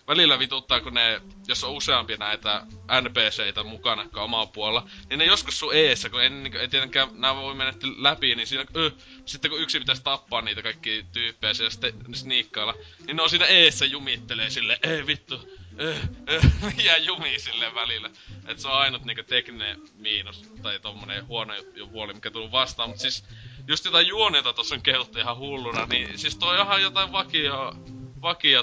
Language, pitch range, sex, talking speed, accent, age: Finnish, 110-135 Hz, male, 175 wpm, native, 20-39